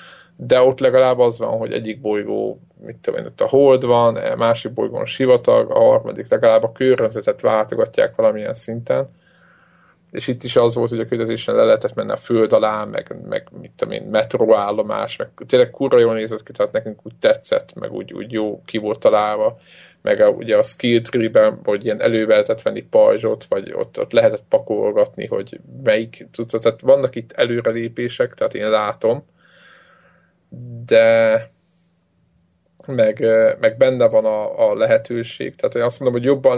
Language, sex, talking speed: Hungarian, male, 165 wpm